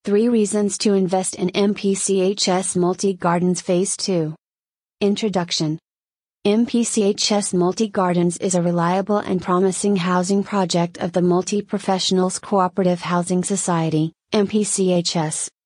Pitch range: 180-200 Hz